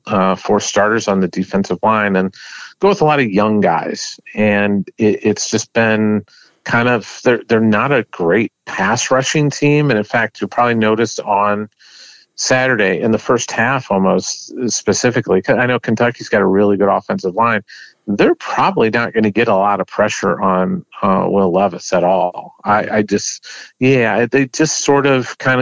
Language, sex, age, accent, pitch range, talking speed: English, male, 40-59, American, 100-120 Hz, 185 wpm